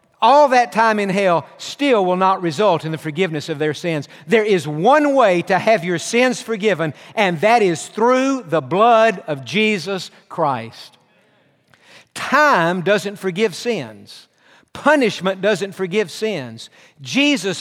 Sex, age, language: male, 50-69, English